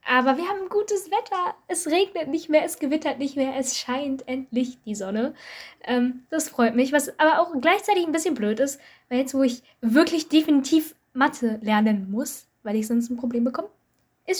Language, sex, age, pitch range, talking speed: German, female, 10-29, 235-310 Hz, 190 wpm